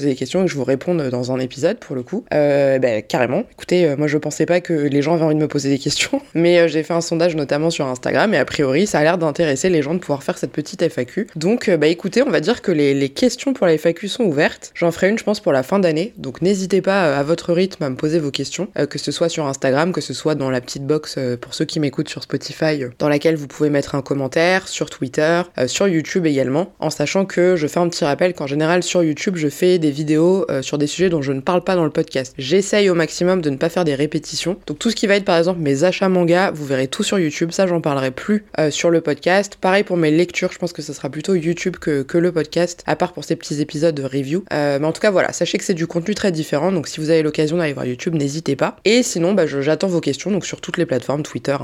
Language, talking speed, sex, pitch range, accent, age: French, 285 wpm, female, 145-180 Hz, French, 20-39